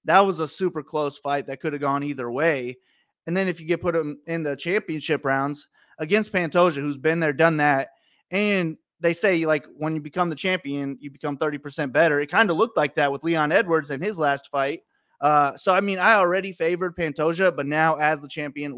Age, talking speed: 30-49, 220 wpm